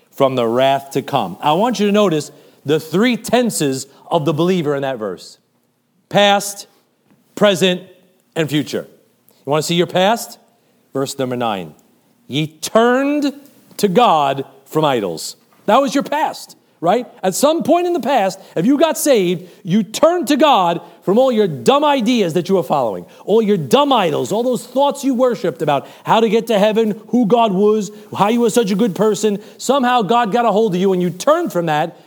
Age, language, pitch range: 40-59, English, 155-235 Hz